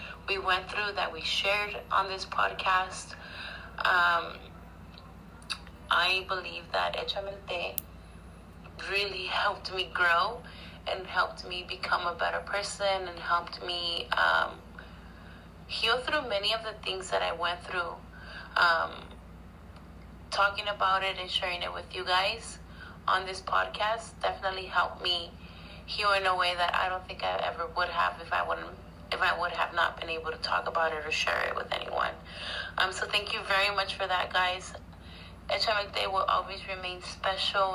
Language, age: English, 30-49